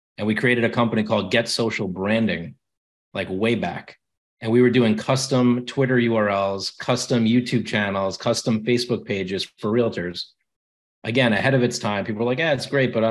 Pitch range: 110-130 Hz